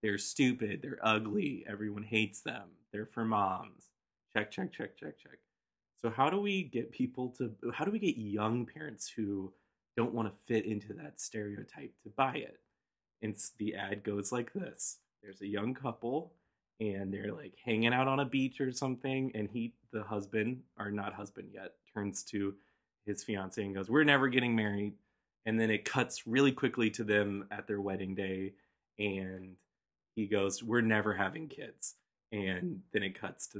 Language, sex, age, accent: English, male, 20-39, American